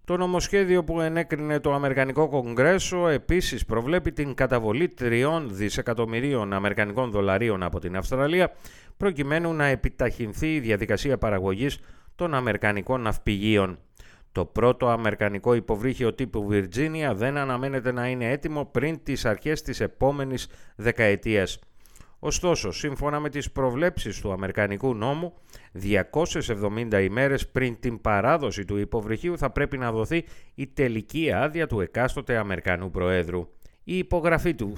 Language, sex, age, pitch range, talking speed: Greek, male, 30-49, 105-145 Hz, 125 wpm